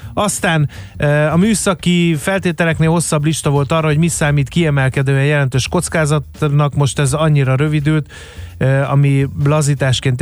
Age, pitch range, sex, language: 30-49, 125-155 Hz, male, Hungarian